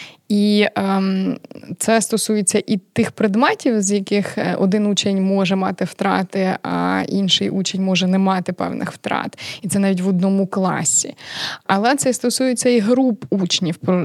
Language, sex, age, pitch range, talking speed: Ukrainian, female, 20-39, 185-220 Hz, 150 wpm